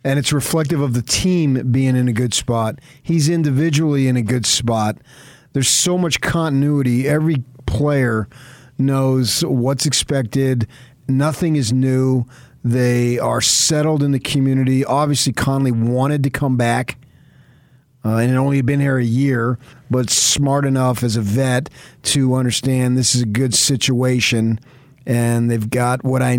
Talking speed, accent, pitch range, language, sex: 150 wpm, American, 120-135 Hz, English, male